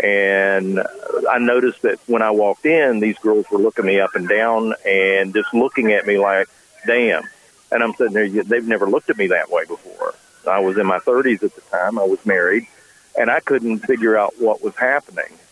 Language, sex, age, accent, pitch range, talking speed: English, male, 50-69, American, 105-130 Hz, 210 wpm